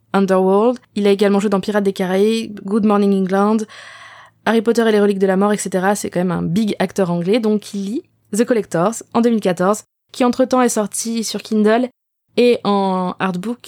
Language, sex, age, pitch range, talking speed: French, female, 20-39, 195-235 Hz, 195 wpm